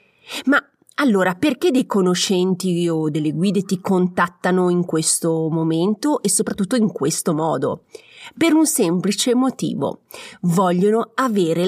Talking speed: 125 wpm